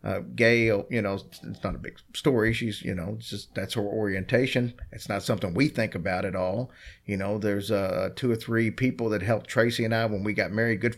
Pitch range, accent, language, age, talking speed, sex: 100-115 Hz, American, English, 40-59, 235 wpm, male